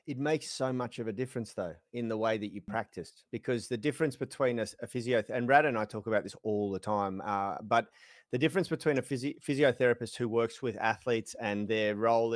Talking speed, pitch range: 220 wpm, 110-130 Hz